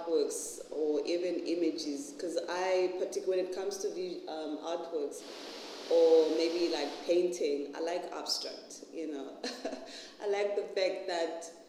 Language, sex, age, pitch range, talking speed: English, female, 30-49, 145-175 Hz, 145 wpm